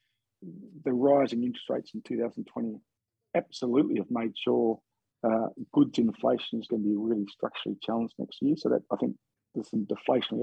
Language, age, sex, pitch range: English, 50-69, male, 110-130 Hz